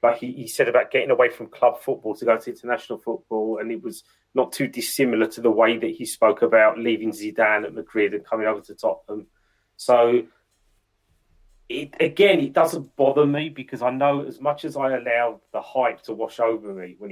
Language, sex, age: English, male, 30-49